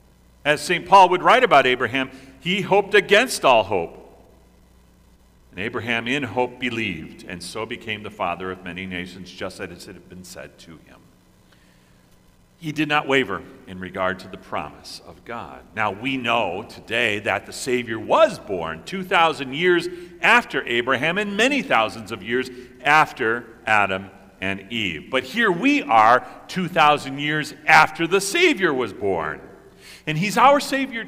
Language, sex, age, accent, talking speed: English, male, 40-59, American, 155 wpm